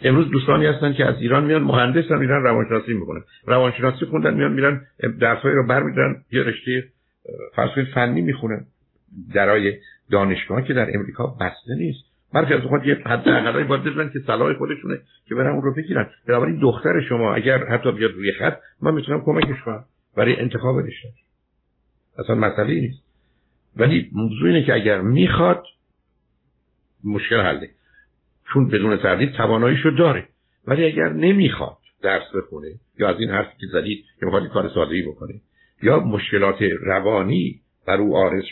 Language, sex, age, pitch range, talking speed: Persian, male, 60-79, 105-140 Hz, 150 wpm